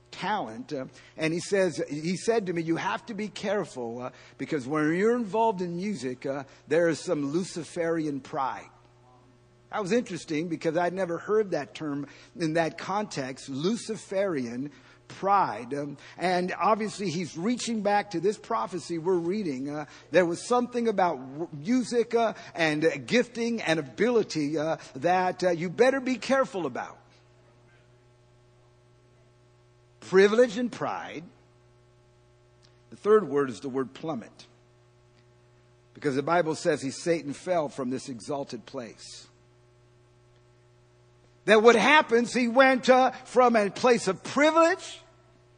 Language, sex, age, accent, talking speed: English, male, 50-69, American, 135 wpm